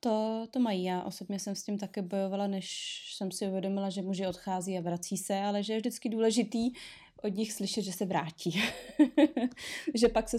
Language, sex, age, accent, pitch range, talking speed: Czech, female, 20-39, native, 195-235 Hz, 195 wpm